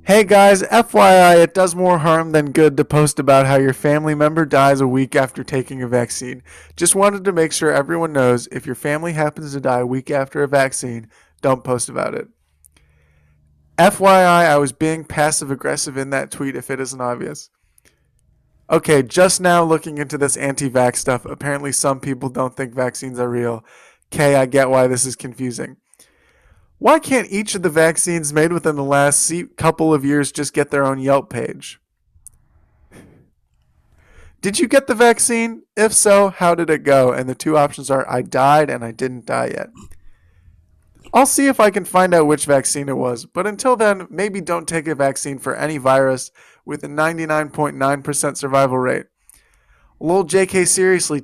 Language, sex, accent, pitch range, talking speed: English, male, American, 130-170 Hz, 180 wpm